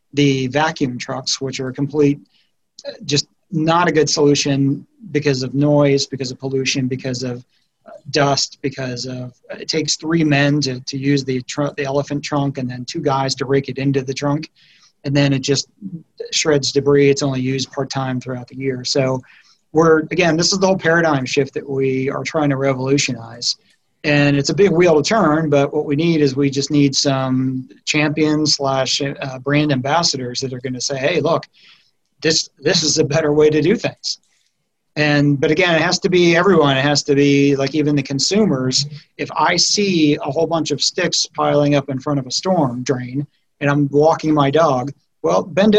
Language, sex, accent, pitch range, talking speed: English, male, American, 135-155 Hz, 195 wpm